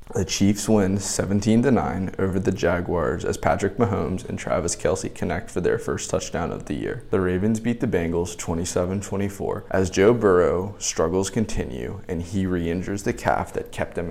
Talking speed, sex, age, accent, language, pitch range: 170 wpm, male, 20-39, American, English, 90-105 Hz